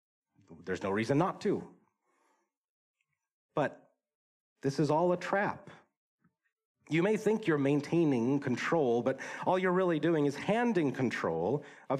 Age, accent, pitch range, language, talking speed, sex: 40-59, American, 110-155 Hz, English, 130 wpm, male